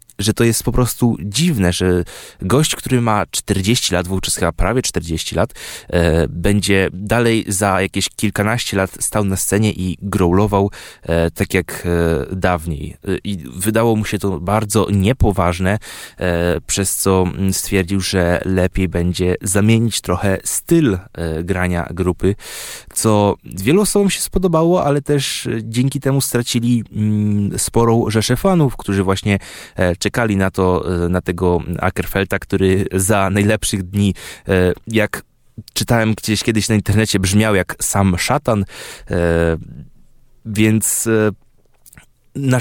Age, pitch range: 20-39, 90-110 Hz